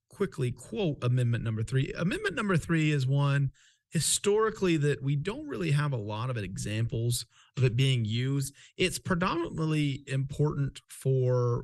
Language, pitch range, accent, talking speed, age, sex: English, 125-155 Hz, American, 150 wpm, 40-59, male